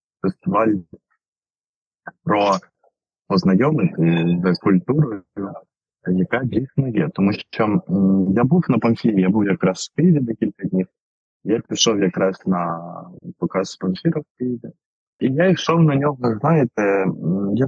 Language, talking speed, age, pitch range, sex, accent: Ukrainian, 125 wpm, 20-39, 105-145 Hz, male, native